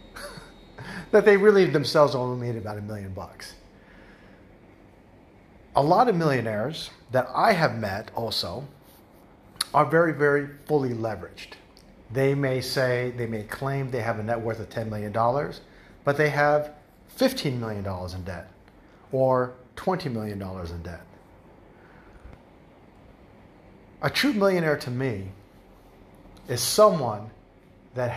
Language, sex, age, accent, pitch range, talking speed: English, male, 40-59, American, 95-140 Hz, 125 wpm